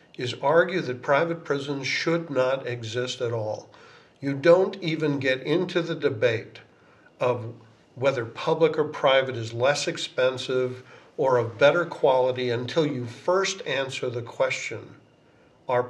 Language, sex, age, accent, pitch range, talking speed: English, male, 50-69, American, 125-160 Hz, 135 wpm